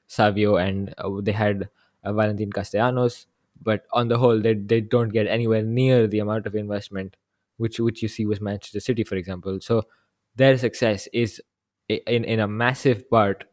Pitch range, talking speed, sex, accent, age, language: 105-115 Hz, 180 wpm, male, Indian, 20-39, English